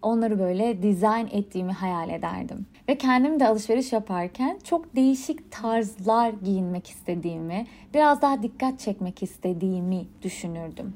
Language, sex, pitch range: Turkish, female, 185-245 Hz